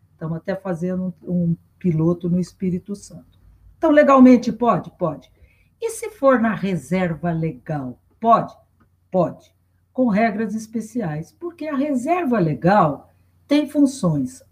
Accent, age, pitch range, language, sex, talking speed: Brazilian, 60-79, 170-260 Hz, Portuguese, female, 125 wpm